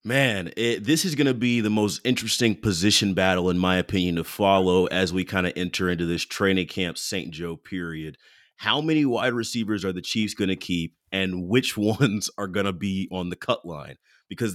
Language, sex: English, male